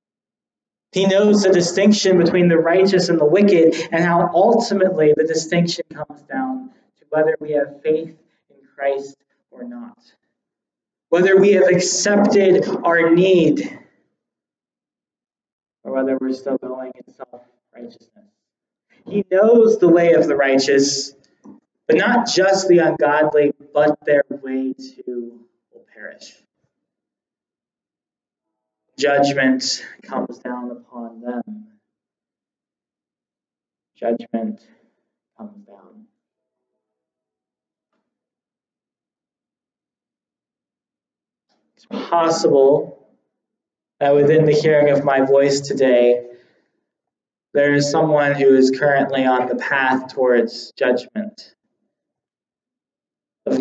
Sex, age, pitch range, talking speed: male, 20-39, 130-185 Hz, 95 wpm